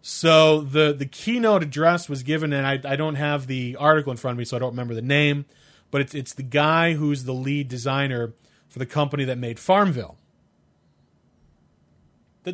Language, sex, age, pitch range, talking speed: English, male, 30-49, 115-155 Hz, 190 wpm